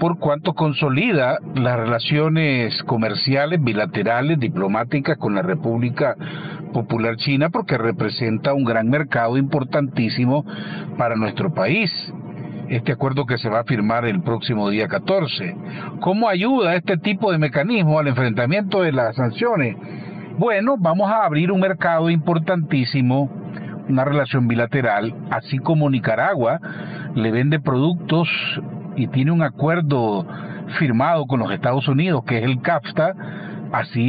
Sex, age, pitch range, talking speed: male, 50-69, 125-170 Hz, 130 wpm